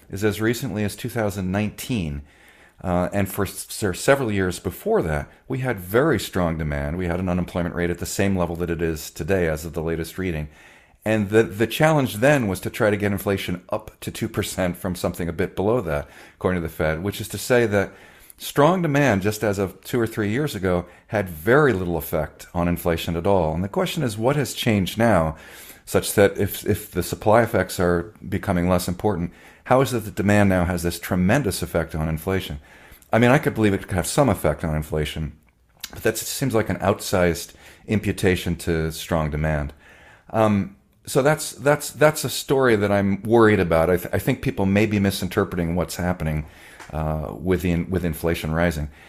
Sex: male